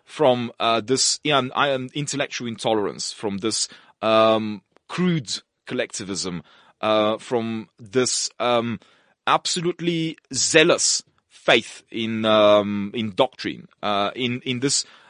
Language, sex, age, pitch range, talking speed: English, male, 30-49, 120-180 Hz, 105 wpm